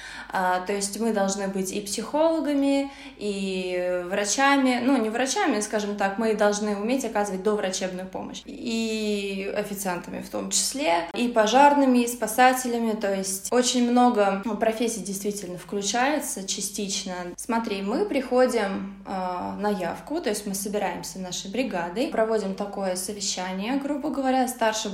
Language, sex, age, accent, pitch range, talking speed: Russian, female, 20-39, native, 190-230 Hz, 130 wpm